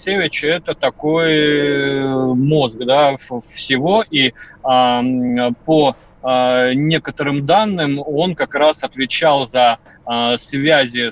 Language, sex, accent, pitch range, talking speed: Russian, male, native, 125-155 Hz, 75 wpm